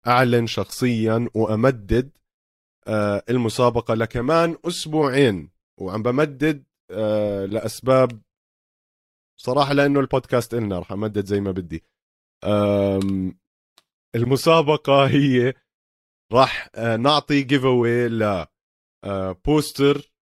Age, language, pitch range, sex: 30-49, Arabic, 105-130 Hz, male